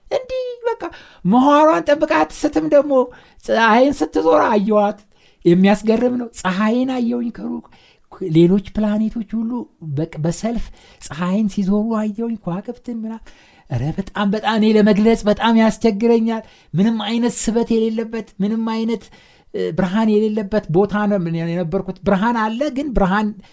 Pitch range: 145-225 Hz